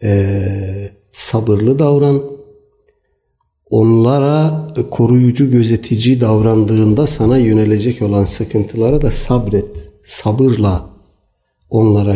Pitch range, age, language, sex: 105-140 Hz, 60-79, Turkish, male